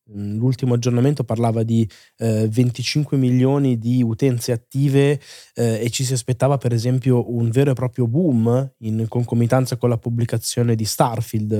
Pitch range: 115-135 Hz